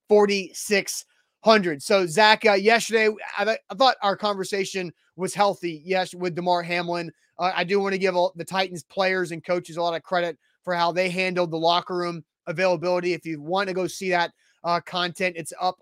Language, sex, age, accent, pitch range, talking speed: English, male, 30-49, American, 165-190 Hz, 195 wpm